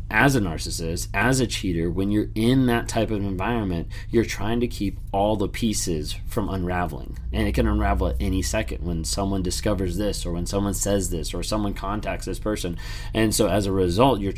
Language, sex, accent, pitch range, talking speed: English, male, American, 95-110 Hz, 205 wpm